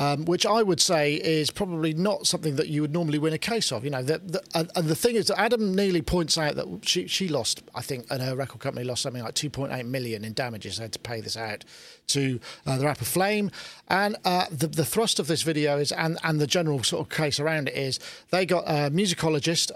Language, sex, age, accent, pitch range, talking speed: English, male, 40-59, British, 140-175 Hz, 245 wpm